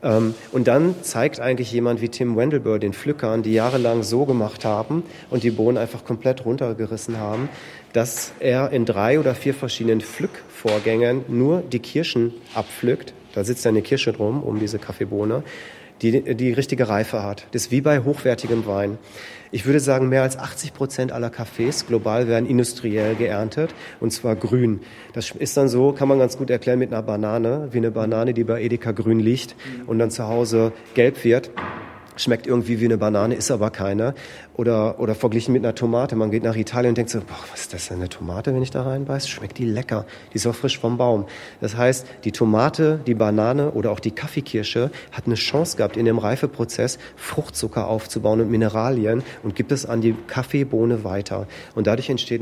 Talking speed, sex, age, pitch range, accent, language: 190 wpm, male, 40-59, 110-130 Hz, German, German